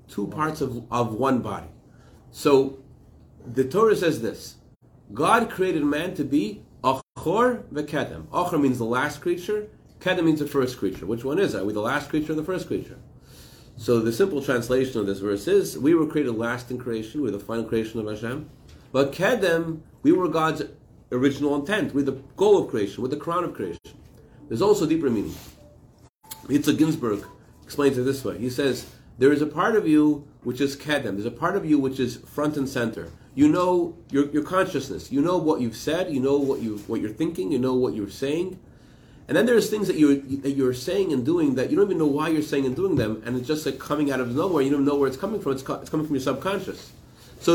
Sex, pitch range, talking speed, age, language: male, 130-175 Hz, 220 wpm, 40-59, English